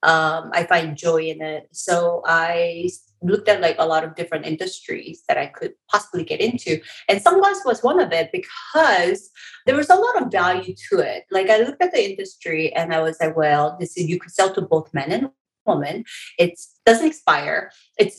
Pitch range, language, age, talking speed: 165-230 Hz, English, 30-49, 205 wpm